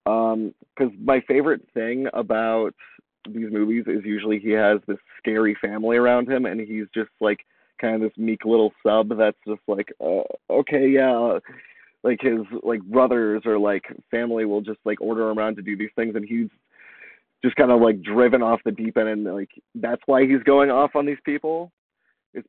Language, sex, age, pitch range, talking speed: English, male, 30-49, 110-125 Hz, 190 wpm